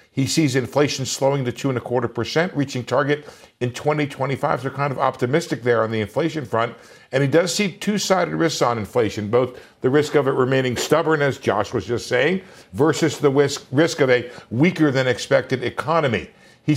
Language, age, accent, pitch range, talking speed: English, 50-69, American, 125-155 Hz, 195 wpm